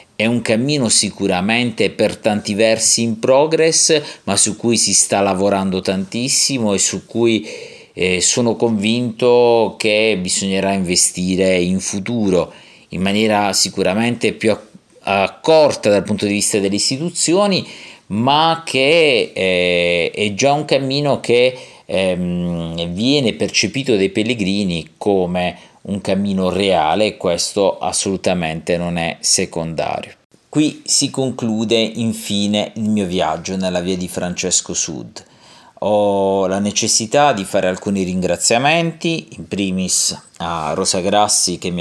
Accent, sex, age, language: native, male, 50-69, Italian